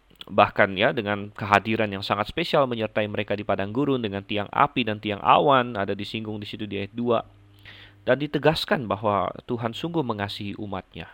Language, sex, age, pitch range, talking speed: Indonesian, male, 20-39, 100-120 Hz, 170 wpm